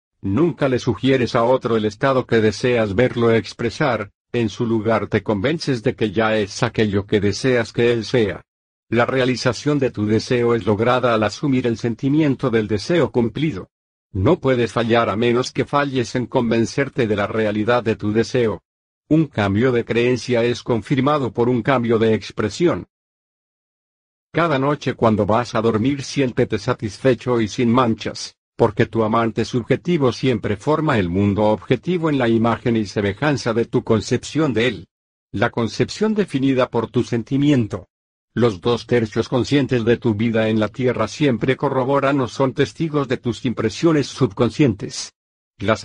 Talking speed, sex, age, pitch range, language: 160 wpm, male, 50-69, 110-135 Hz, Spanish